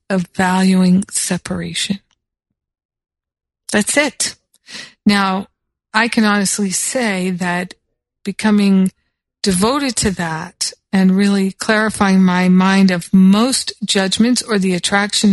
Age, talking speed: 50-69, 100 wpm